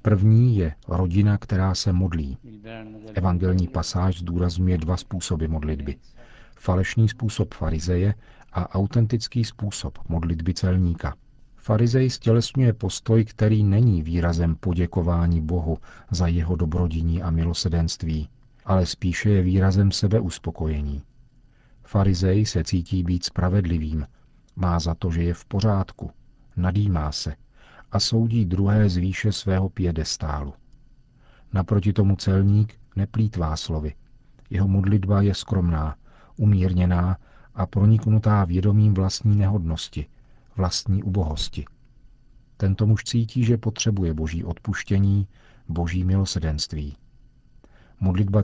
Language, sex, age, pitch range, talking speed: Czech, male, 40-59, 85-110 Hz, 105 wpm